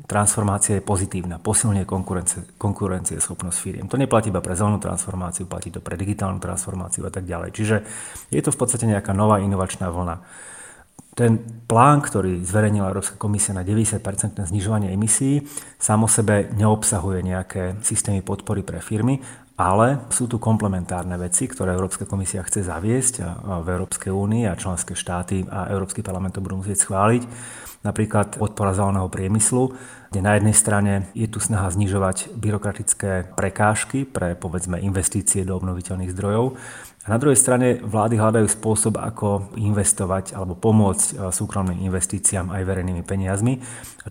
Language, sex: Slovak, male